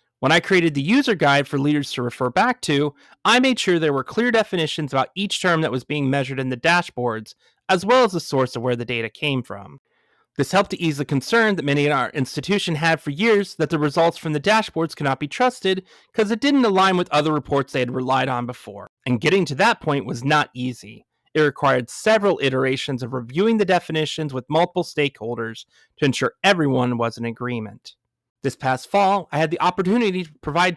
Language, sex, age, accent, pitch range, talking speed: English, male, 30-49, American, 135-190 Hz, 215 wpm